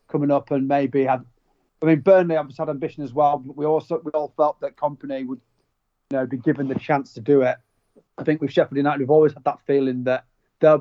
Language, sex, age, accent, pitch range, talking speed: English, male, 30-49, British, 125-150 Hz, 240 wpm